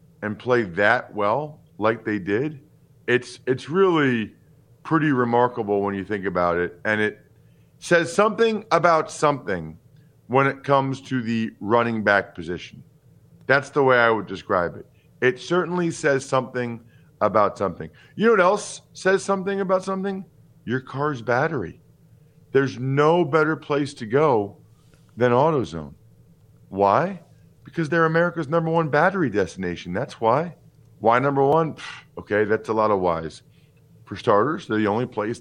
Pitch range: 110-150 Hz